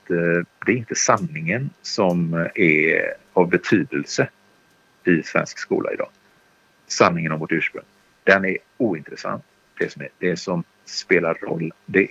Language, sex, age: Swedish, male, 50-69